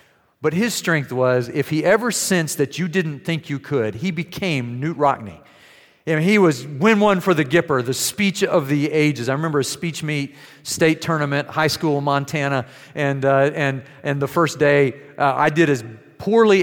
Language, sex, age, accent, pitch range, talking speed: English, male, 40-59, American, 130-165 Hz, 190 wpm